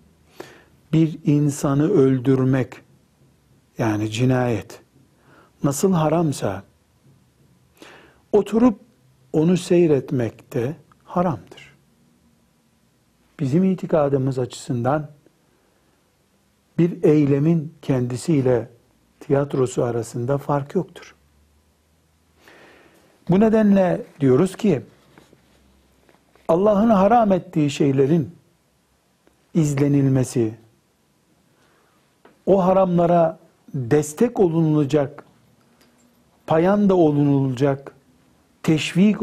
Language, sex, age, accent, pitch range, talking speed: Turkish, male, 60-79, native, 130-170 Hz, 60 wpm